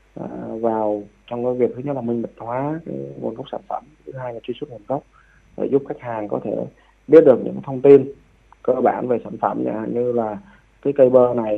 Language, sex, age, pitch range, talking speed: Vietnamese, male, 20-39, 110-130 Hz, 235 wpm